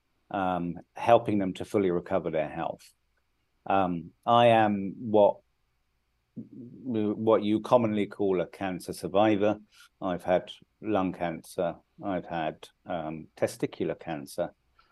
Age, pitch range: 50-69, 90-105 Hz